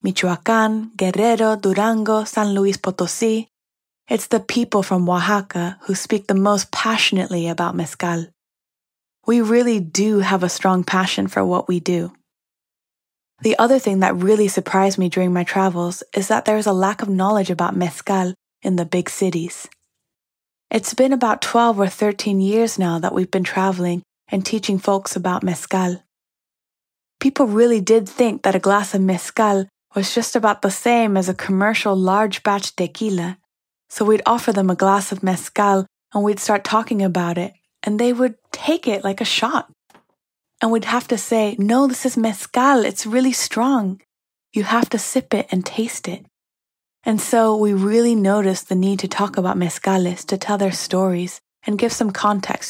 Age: 20-39